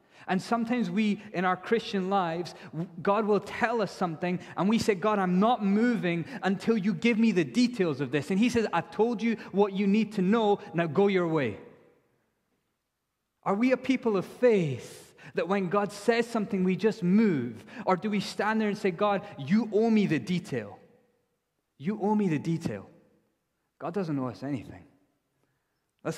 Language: English